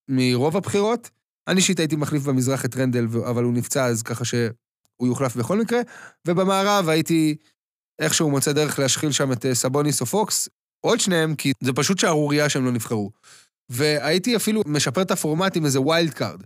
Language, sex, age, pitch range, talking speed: Hebrew, male, 20-39, 135-185 Hz, 170 wpm